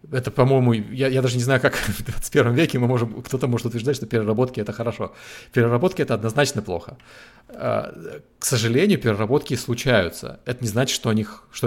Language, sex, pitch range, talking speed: Russian, male, 110-125 Hz, 185 wpm